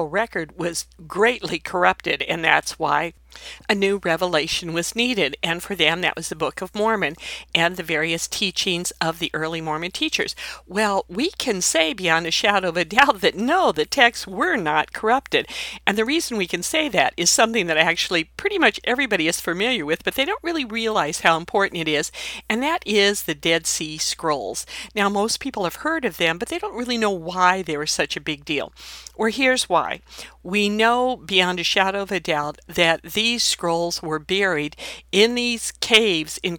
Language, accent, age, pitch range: English, American, 50-69, 165-225 Hz